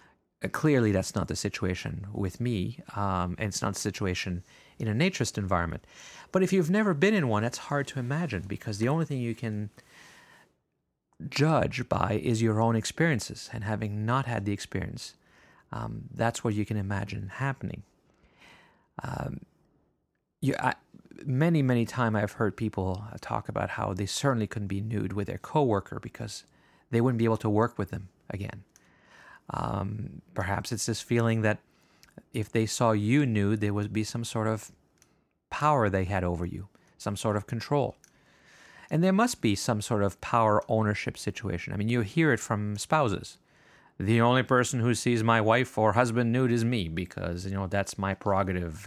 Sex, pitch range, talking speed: male, 100-125 Hz, 175 wpm